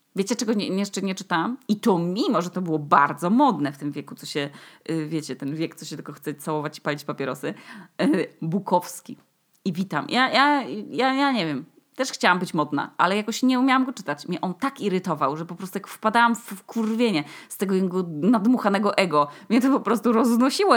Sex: female